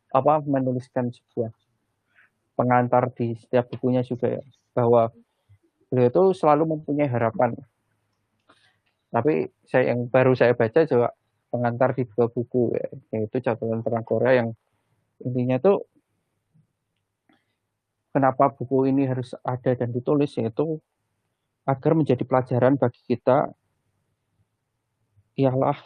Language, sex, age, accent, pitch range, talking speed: Indonesian, male, 20-39, native, 115-135 Hz, 110 wpm